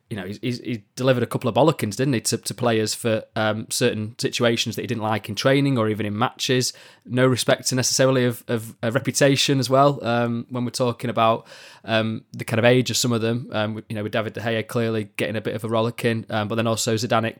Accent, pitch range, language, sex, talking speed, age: British, 110-130 Hz, English, male, 245 wpm, 20-39